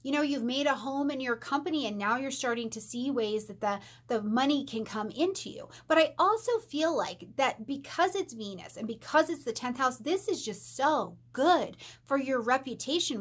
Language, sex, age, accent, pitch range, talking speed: English, female, 30-49, American, 220-280 Hz, 215 wpm